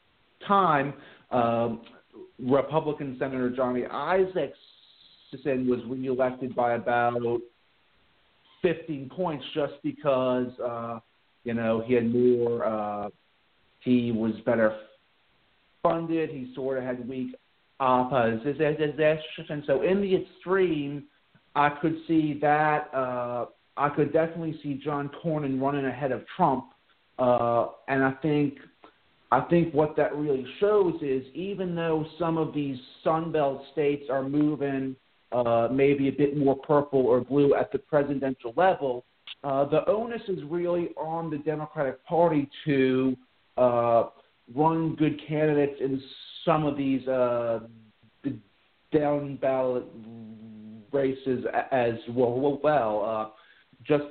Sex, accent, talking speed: male, American, 120 wpm